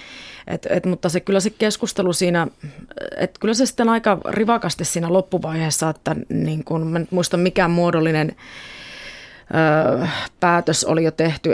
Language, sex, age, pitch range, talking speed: Finnish, female, 30-49, 155-185 Hz, 135 wpm